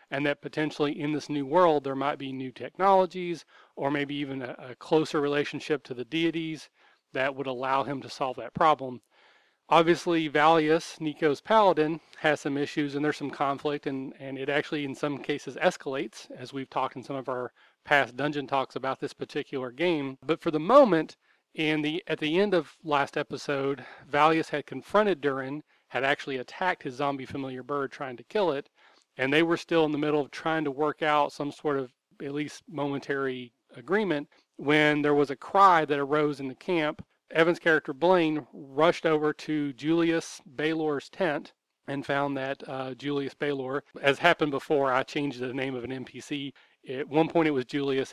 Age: 40-59